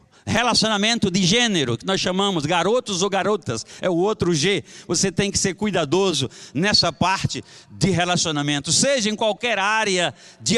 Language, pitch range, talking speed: Portuguese, 170-220 Hz, 155 wpm